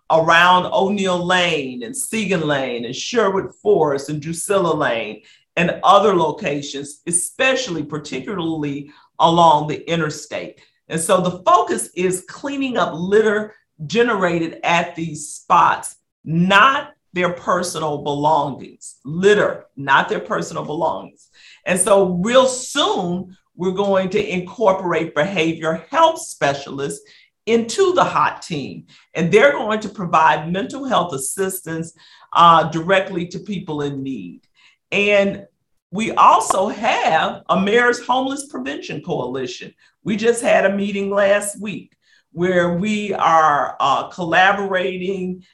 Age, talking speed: 50-69, 120 wpm